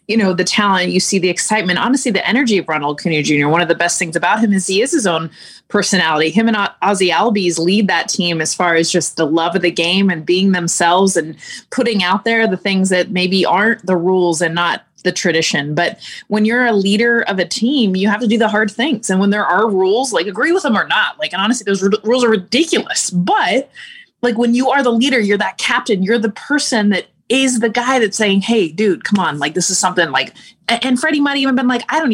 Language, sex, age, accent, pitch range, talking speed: English, female, 20-39, American, 180-230 Hz, 245 wpm